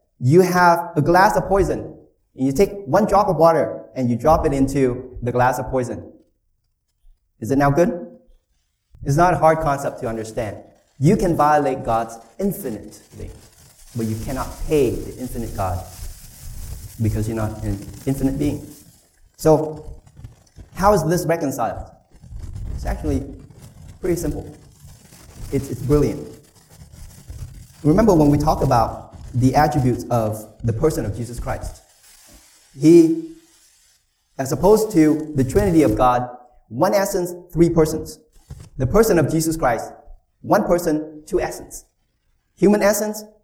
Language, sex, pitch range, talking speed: English, male, 115-170 Hz, 135 wpm